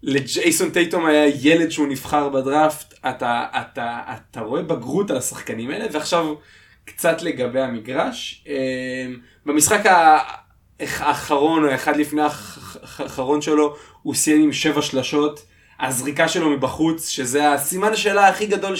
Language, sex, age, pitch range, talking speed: Hebrew, male, 20-39, 135-160 Hz, 125 wpm